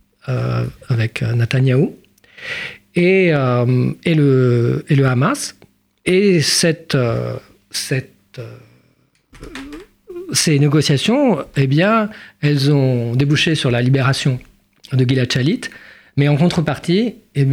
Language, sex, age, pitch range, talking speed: French, male, 40-59, 135-190 Hz, 90 wpm